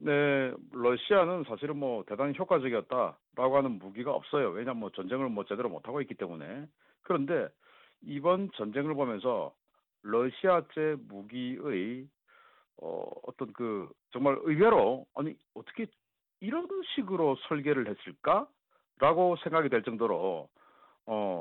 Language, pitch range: Korean, 130-200 Hz